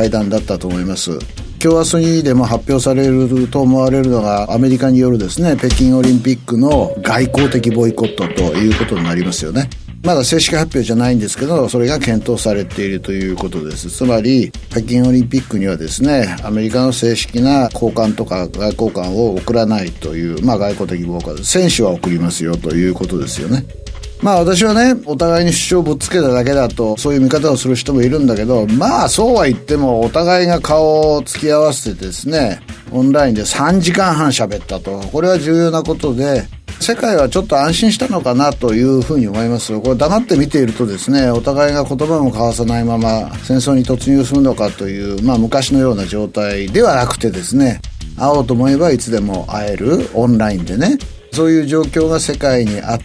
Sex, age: male, 50-69